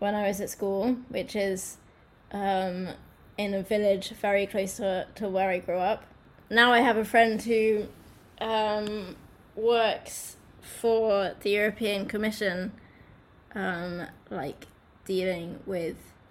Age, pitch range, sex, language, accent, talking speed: 20-39, 195-225 Hz, female, English, British, 130 wpm